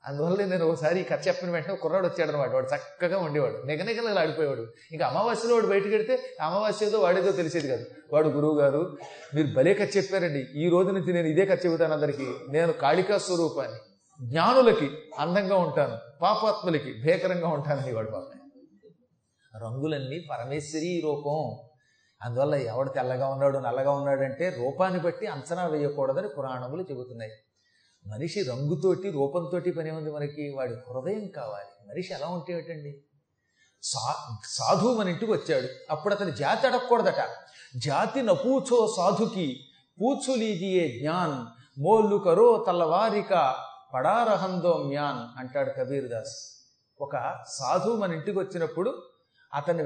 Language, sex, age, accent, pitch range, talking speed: Telugu, male, 30-49, native, 140-200 Hz, 115 wpm